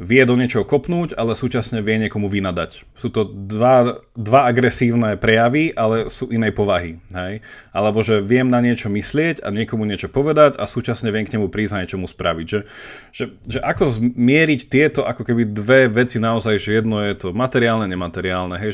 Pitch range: 105-125 Hz